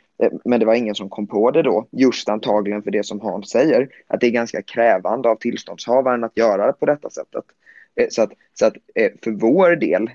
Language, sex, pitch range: Swedish, male, 105-130 Hz